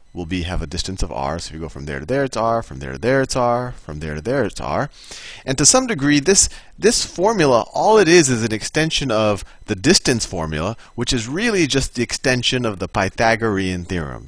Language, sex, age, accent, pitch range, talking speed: English, male, 30-49, American, 80-115 Hz, 235 wpm